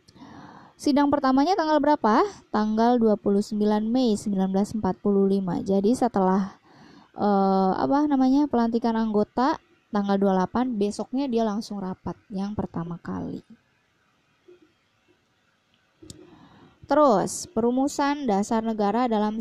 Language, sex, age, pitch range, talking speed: Indonesian, female, 20-39, 195-255 Hz, 90 wpm